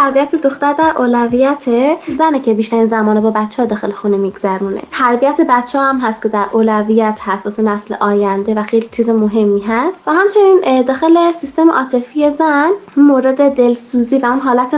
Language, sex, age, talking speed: Persian, female, 10-29, 170 wpm